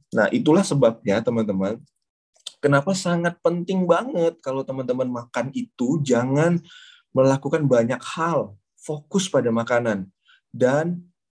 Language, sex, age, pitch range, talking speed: Indonesian, male, 20-39, 125-175 Hz, 105 wpm